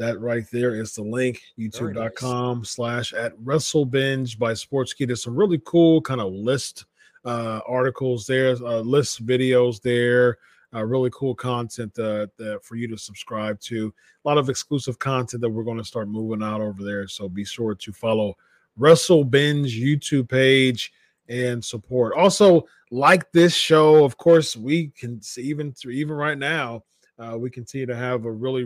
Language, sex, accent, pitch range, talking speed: English, male, American, 115-135 Hz, 170 wpm